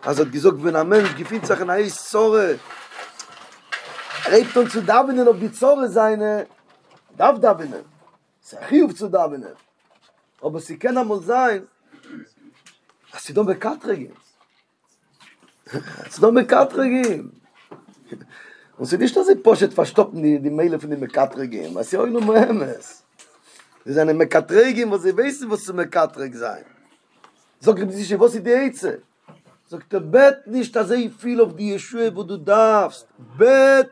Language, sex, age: English, male, 40-59